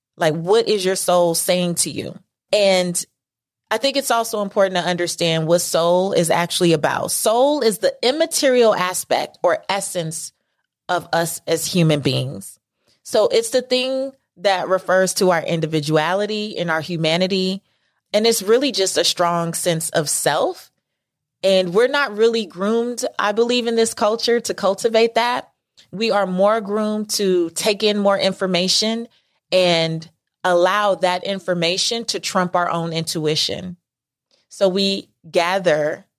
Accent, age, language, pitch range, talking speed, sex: American, 30-49, English, 165-200 Hz, 145 wpm, female